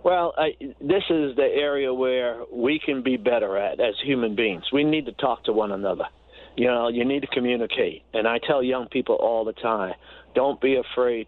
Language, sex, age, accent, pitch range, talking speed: English, male, 50-69, American, 115-155 Hz, 205 wpm